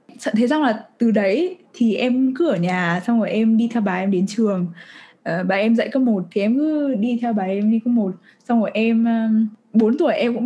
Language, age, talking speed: Vietnamese, 10-29, 235 wpm